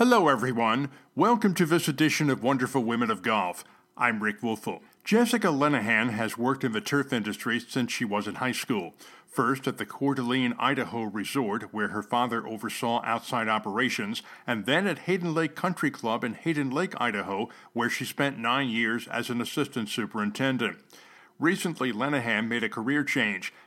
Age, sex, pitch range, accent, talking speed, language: 50-69, male, 115-140 Hz, American, 165 wpm, English